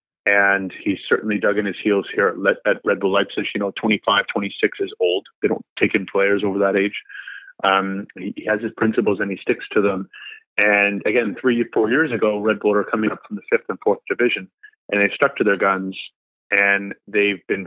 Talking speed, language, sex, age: 215 wpm, English, male, 30-49